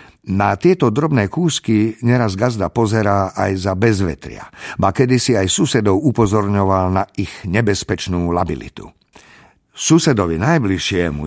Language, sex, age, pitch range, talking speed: Slovak, male, 50-69, 95-130 Hz, 110 wpm